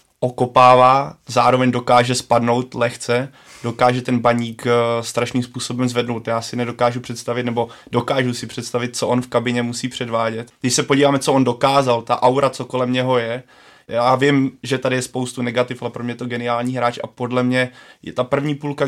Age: 20-39